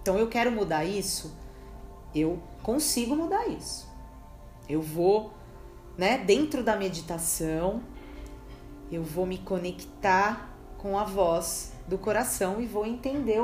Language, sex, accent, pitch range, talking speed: Portuguese, female, Brazilian, 175-265 Hz, 120 wpm